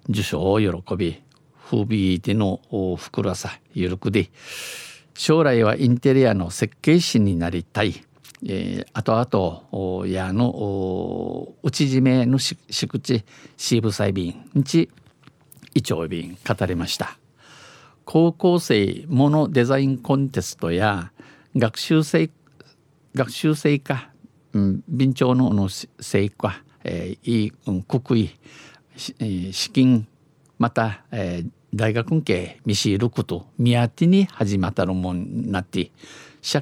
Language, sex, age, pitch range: Japanese, male, 50-69, 100-140 Hz